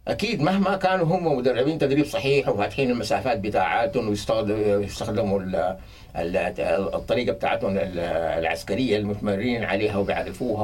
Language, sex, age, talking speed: English, male, 60-79, 100 wpm